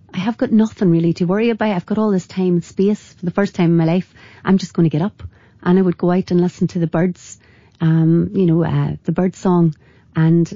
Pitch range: 170-200 Hz